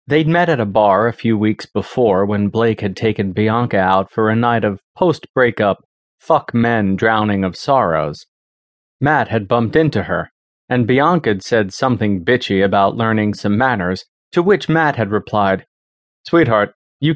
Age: 30-49